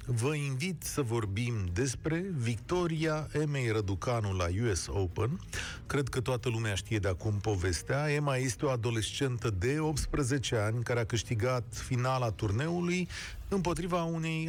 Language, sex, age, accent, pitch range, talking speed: Romanian, male, 40-59, native, 110-160 Hz, 135 wpm